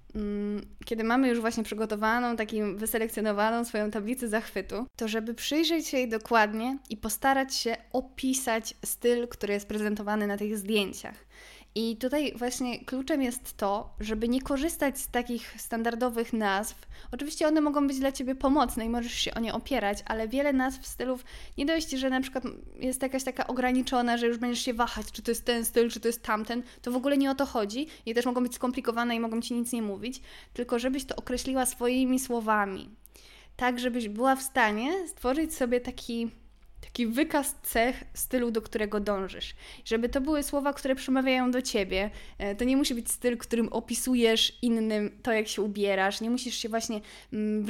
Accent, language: native, Polish